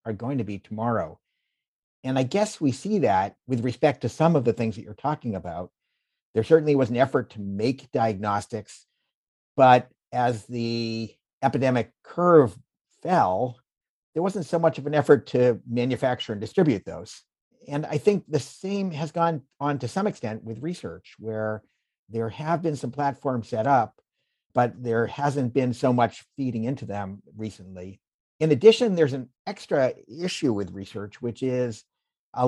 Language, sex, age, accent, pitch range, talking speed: Hebrew, male, 50-69, American, 115-155 Hz, 165 wpm